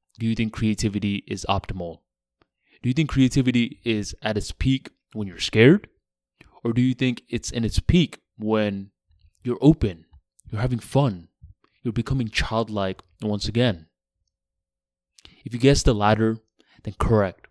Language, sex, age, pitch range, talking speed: English, male, 20-39, 95-120 Hz, 145 wpm